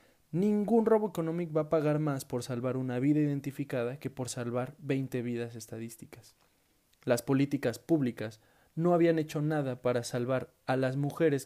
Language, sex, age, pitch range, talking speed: Spanish, male, 20-39, 120-145 Hz, 155 wpm